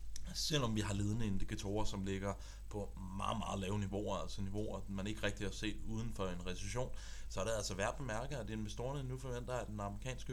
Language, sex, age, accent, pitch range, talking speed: Danish, male, 20-39, native, 100-115 Hz, 215 wpm